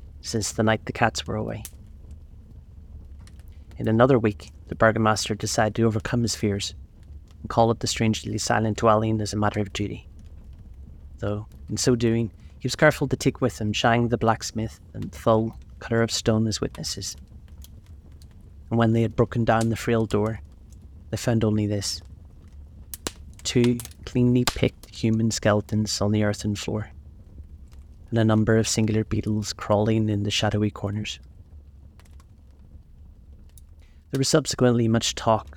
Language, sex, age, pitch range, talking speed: English, male, 30-49, 80-115 Hz, 150 wpm